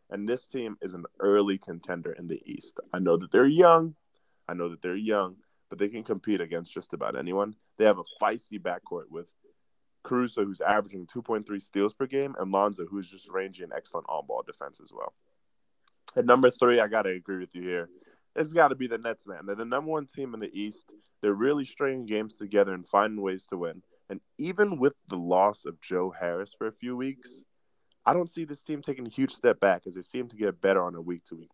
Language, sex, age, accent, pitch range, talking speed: English, male, 20-39, American, 95-145 Hz, 225 wpm